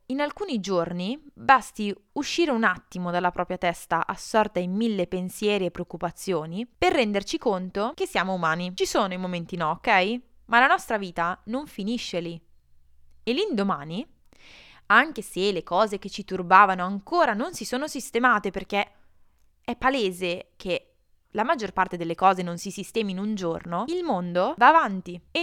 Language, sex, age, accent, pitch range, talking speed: Italian, female, 20-39, native, 185-260 Hz, 165 wpm